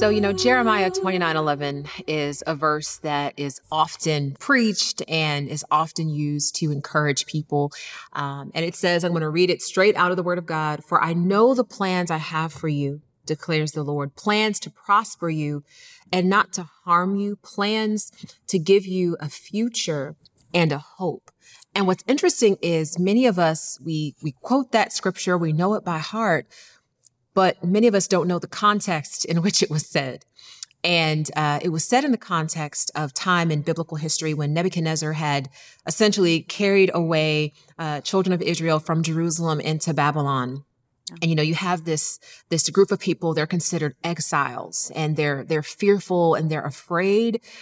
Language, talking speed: English, 180 wpm